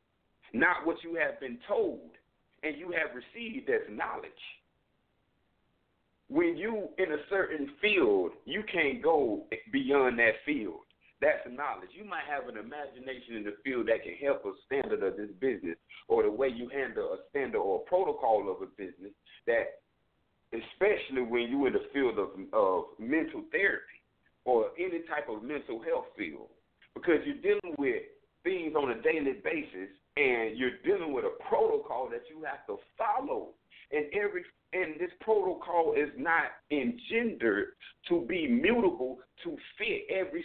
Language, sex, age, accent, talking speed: English, male, 50-69, American, 160 wpm